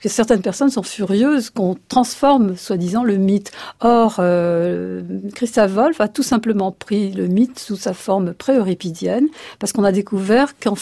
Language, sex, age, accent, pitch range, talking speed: French, female, 50-69, French, 190-245 Hz, 165 wpm